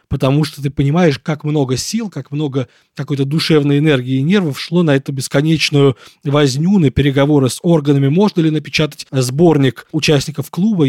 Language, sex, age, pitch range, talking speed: Russian, male, 20-39, 135-160 Hz, 160 wpm